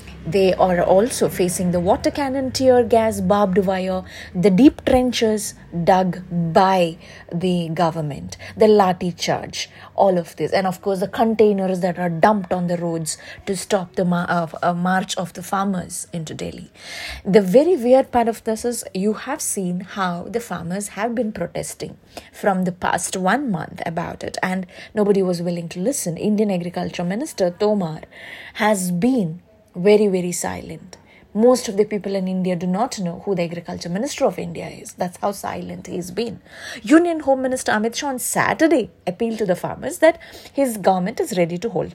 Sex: female